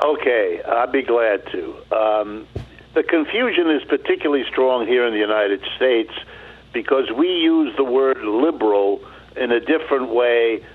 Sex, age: male, 60-79